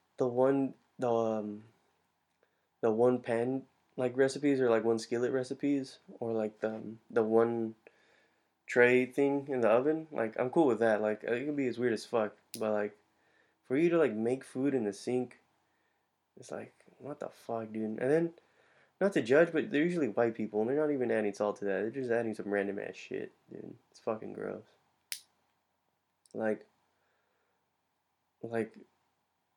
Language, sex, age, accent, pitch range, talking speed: English, male, 20-39, American, 110-135 Hz, 175 wpm